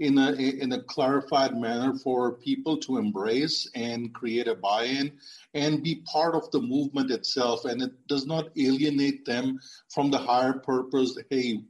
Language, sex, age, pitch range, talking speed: English, male, 50-69, 130-155 Hz, 165 wpm